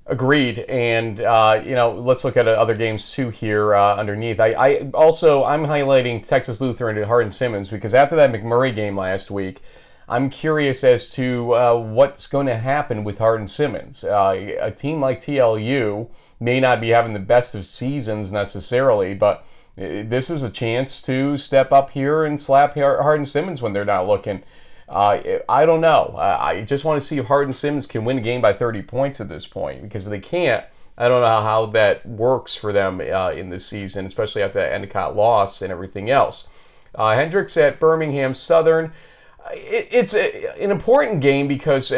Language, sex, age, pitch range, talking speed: English, male, 30-49, 110-140 Hz, 185 wpm